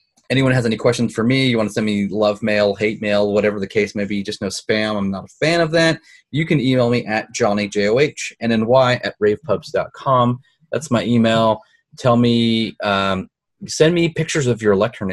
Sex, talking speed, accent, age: male, 200 wpm, American, 30-49